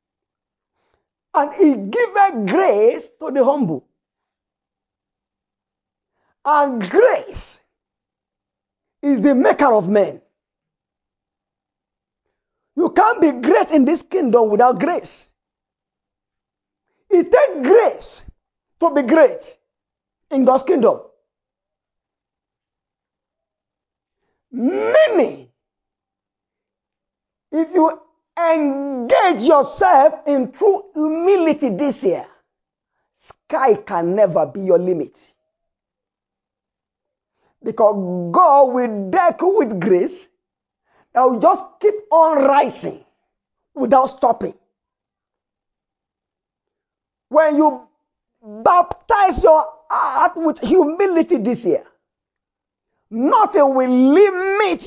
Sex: male